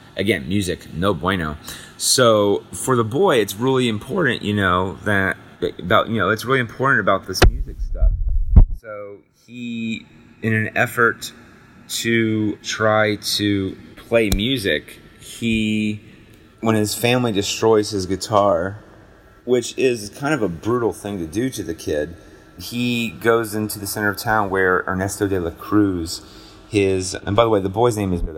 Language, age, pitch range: English, 30-49, 85-105 Hz